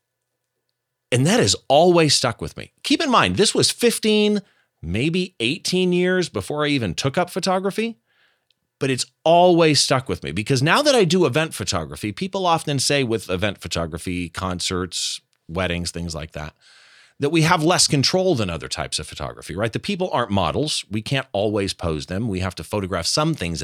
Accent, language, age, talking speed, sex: American, English, 30-49, 185 wpm, male